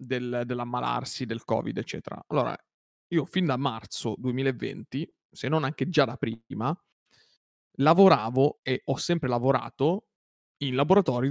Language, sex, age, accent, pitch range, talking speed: Italian, male, 30-49, native, 120-145 Hz, 120 wpm